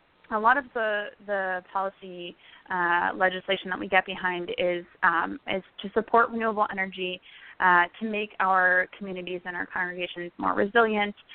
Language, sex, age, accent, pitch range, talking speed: English, female, 20-39, American, 180-215 Hz, 155 wpm